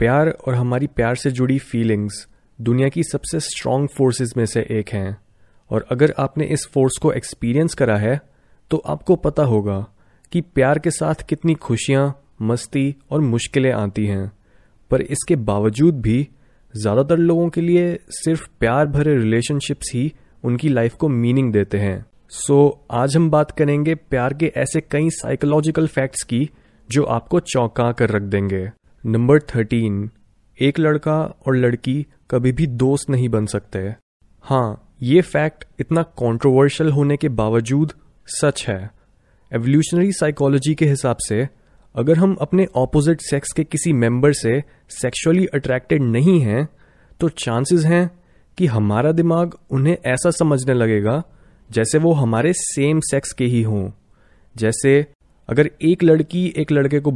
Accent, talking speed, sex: native, 150 wpm, male